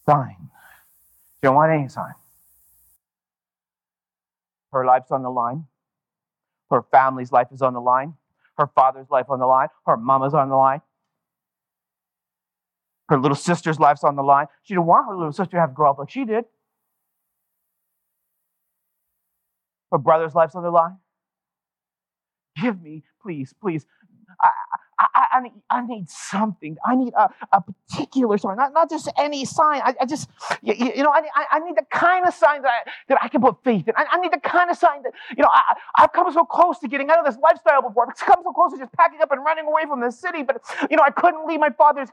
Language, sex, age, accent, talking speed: English, male, 30-49, American, 205 wpm